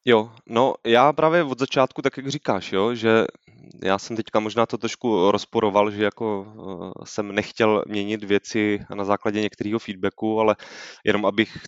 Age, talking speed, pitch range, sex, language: 20-39, 155 wpm, 100-115 Hz, male, Czech